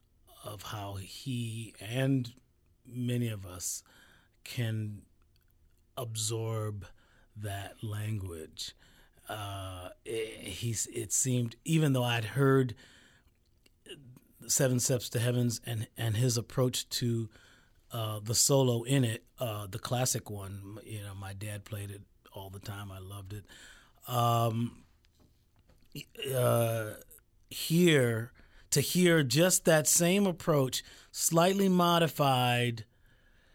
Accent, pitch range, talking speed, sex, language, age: American, 105-125 Hz, 105 wpm, male, English, 30-49